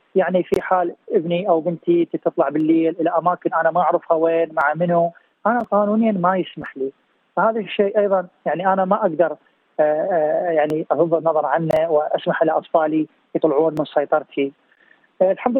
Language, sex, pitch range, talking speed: Arabic, male, 160-200 Hz, 145 wpm